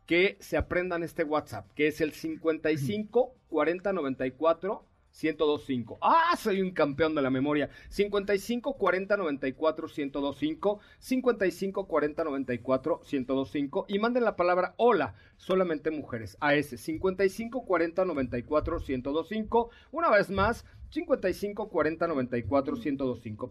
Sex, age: male, 40-59